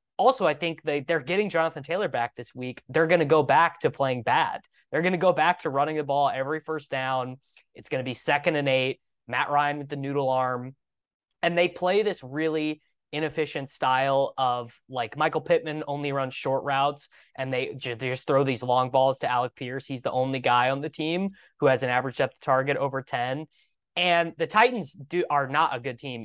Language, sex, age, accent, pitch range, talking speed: English, male, 20-39, American, 130-160 Hz, 215 wpm